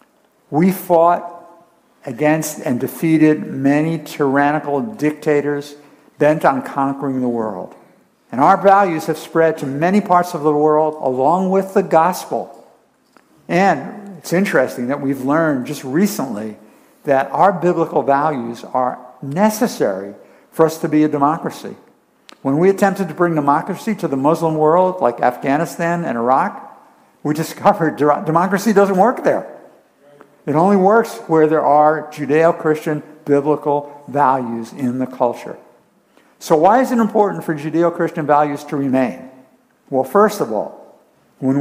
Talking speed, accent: 135 wpm, American